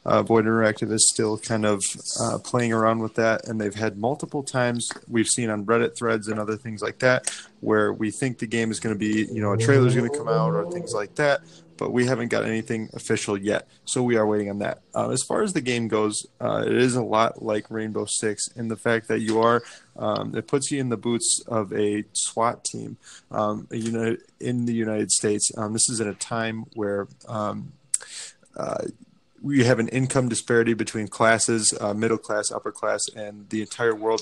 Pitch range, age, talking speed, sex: 110-125 Hz, 20-39, 220 wpm, male